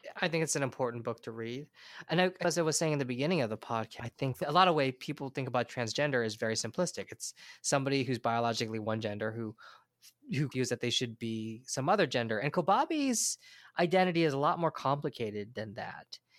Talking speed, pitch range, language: 220 wpm, 130-185 Hz, English